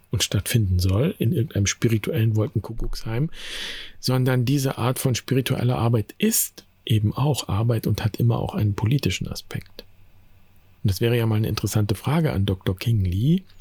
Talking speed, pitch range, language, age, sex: 160 wpm, 95-120 Hz, German, 50-69, male